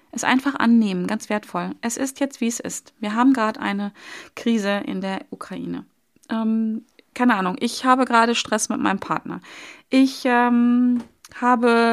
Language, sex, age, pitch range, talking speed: German, female, 30-49, 210-260 Hz, 160 wpm